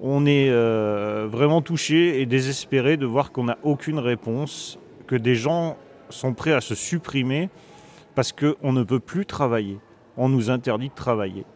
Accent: French